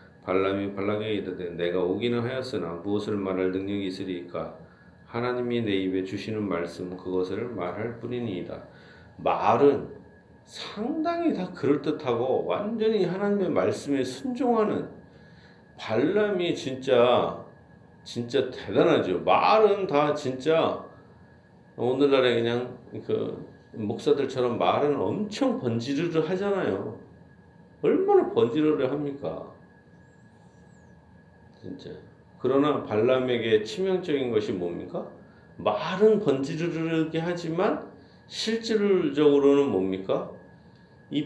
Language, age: Korean, 40-59